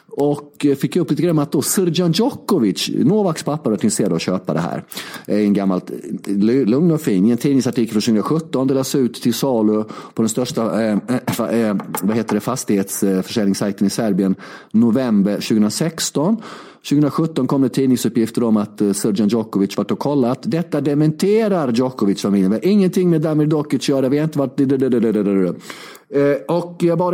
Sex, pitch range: male, 115-155 Hz